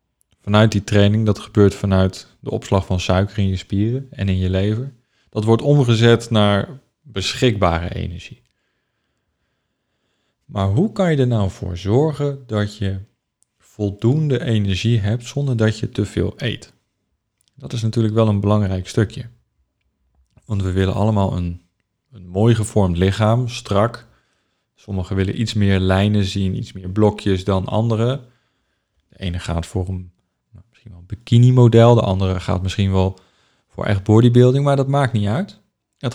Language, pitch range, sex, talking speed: Dutch, 95-120 Hz, male, 155 wpm